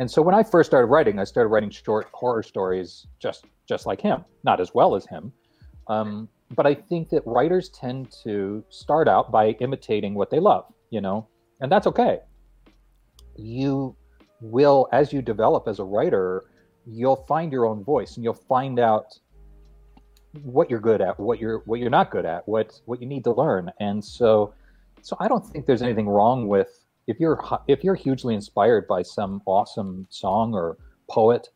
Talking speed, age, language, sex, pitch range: 185 wpm, 40-59, English, male, 100-130 Hz